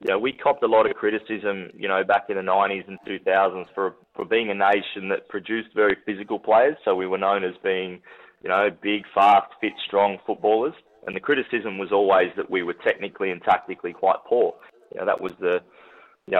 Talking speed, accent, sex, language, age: 220 wpm, Australian, male, English, 20-39